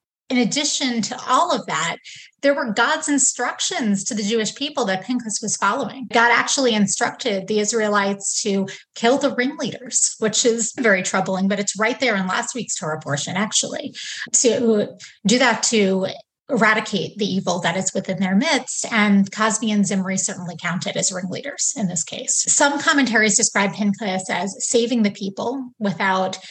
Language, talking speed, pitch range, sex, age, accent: English, 165 wpm, 200-270 Hz, female, 30-49, American